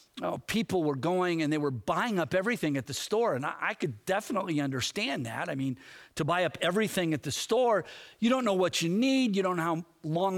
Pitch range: 175-250 Hz